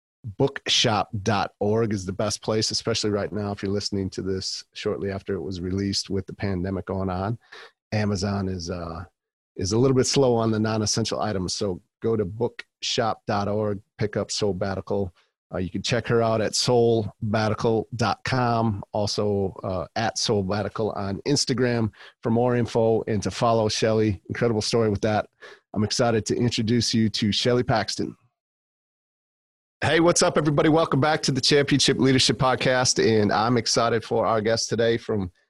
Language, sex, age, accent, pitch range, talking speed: English, male, 40-59, American, 100-120 Hz, 160 wpm